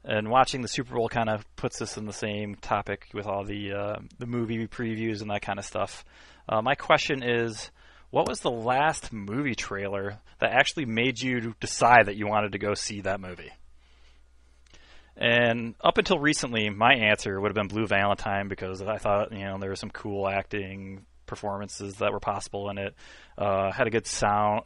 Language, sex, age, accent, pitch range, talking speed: English, male, 20-39, American, 95-115 Hz, 195 wpm